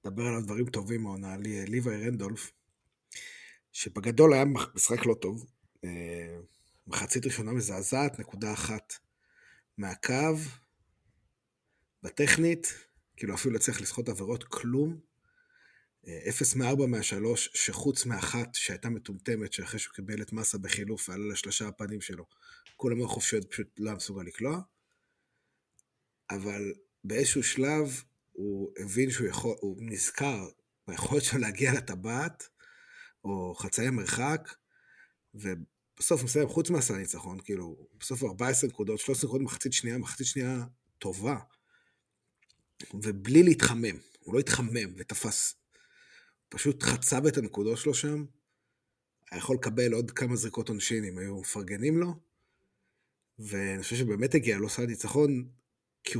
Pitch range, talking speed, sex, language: 100-135 Hz, 120 wpm, male, Hebrew